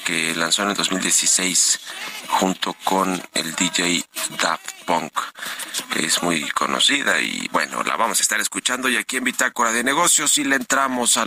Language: Spanish